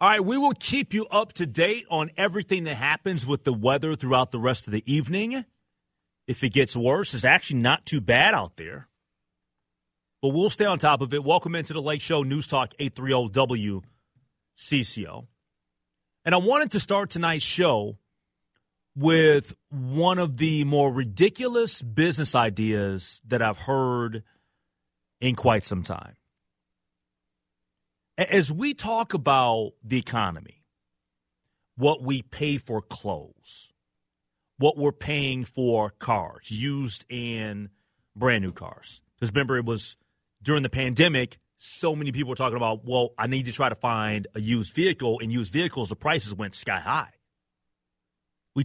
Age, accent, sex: 30-49, American, male